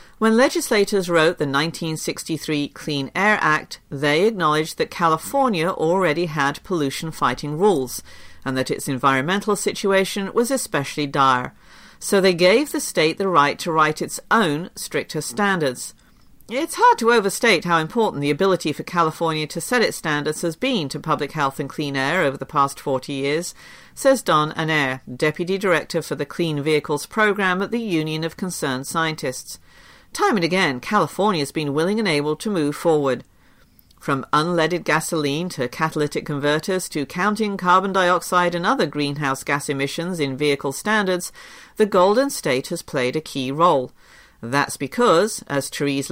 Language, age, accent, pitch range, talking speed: English, 50-69, British, 145-195 Hz, 160 wpm